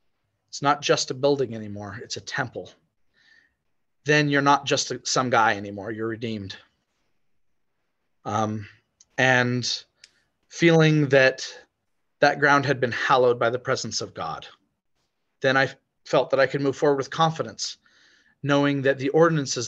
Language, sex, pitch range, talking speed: English, male, 115-140 Hz, 140 wpm